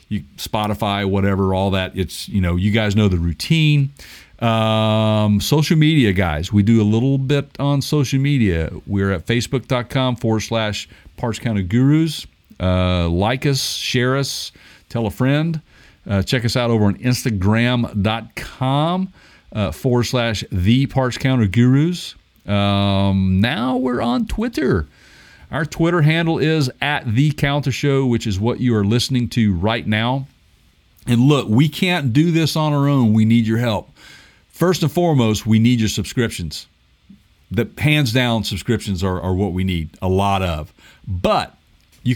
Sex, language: male, English